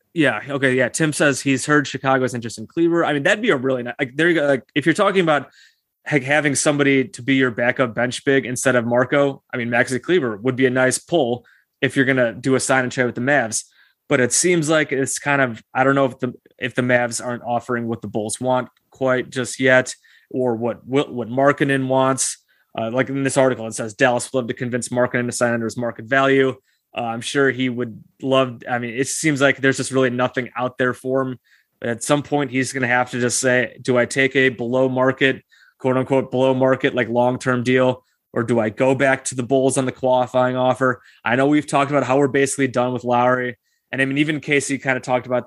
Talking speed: 240 wpm